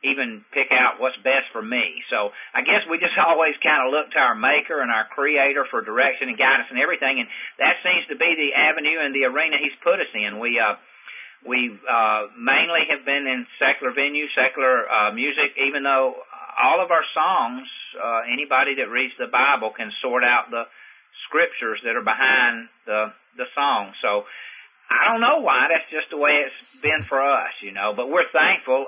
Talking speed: 200 wpm